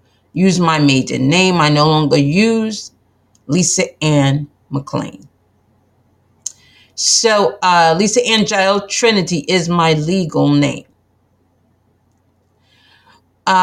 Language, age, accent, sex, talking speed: English, 40-59, American, female, 90 wpm